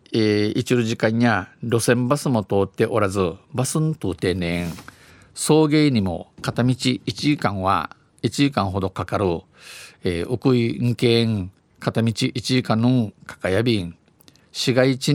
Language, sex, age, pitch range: Japanese, male, 50-69, 100-130 Hz